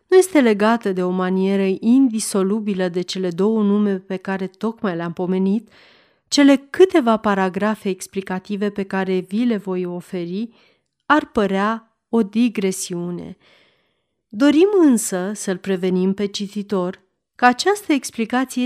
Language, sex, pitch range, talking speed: Romanian, female, 190-235 Hz, 125 wpm